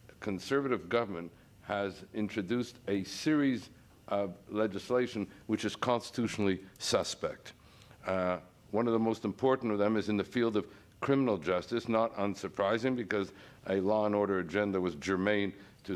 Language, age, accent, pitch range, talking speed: English, 60-79, American, 100-130 Hz, 145 wpm